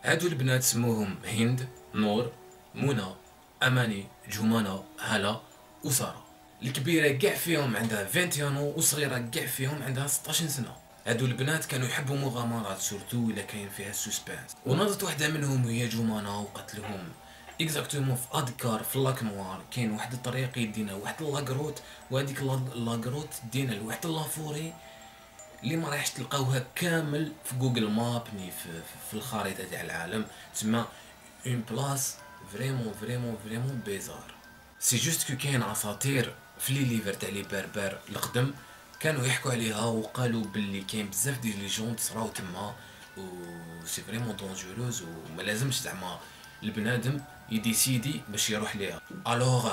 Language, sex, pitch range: Arabic, male, 105-135 Hz